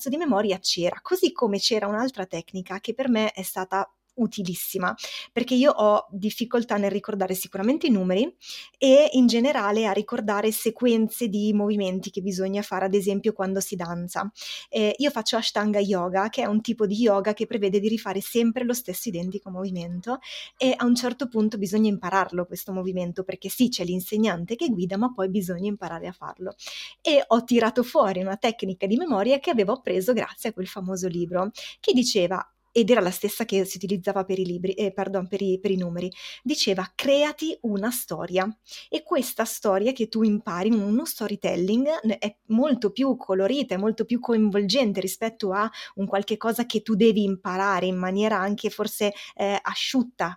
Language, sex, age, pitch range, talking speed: Italian, female, 20-39, 190-235 Hz, 175 wpm